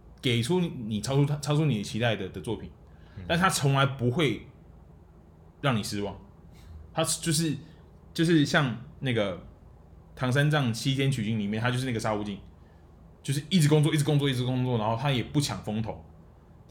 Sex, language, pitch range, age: male, Chinese, 105-145 Hz, 20-39